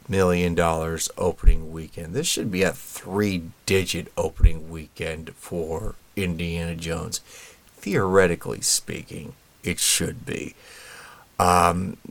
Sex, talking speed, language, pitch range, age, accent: male, 105 wpm, English, 85-100 Hz, 30-49, American